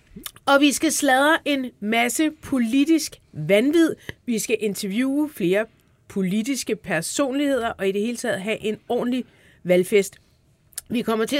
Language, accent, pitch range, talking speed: Danish, native, 200-275 Hz, 135 wpm